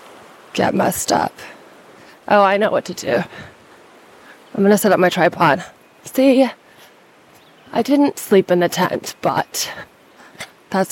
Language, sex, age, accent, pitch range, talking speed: English, female, 20-39, American, 175-220 Hz, 135 wpm